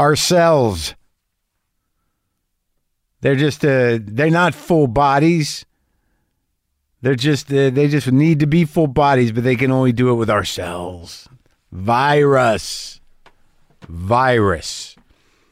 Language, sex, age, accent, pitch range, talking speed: English, male, 50-69, American, 95-130 Hz, 110 wpm